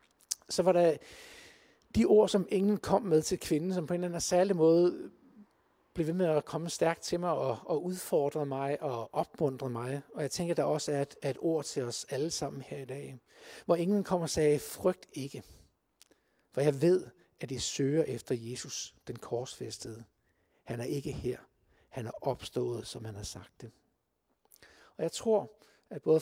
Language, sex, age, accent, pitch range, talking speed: Danish, male, 60-79, native, 135-175 Hz, 190 wpm